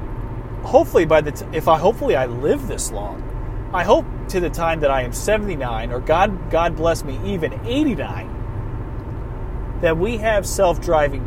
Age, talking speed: 30-49, 175 wpm